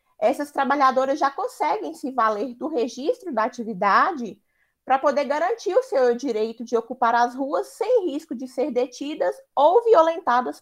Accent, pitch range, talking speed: Brazilian, 230-315 Hz, 155 wpm